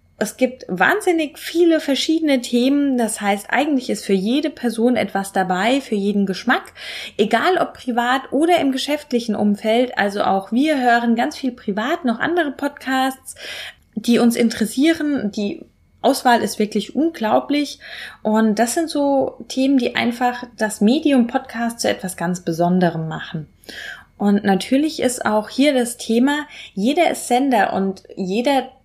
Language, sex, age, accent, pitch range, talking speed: German, female, 20-39, German, 195-260 Hz, 145 wpm